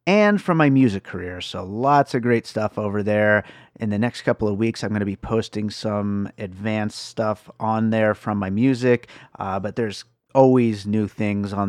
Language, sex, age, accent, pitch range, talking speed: English, male, 30-49, American, 100-120 Hz, 195 wpm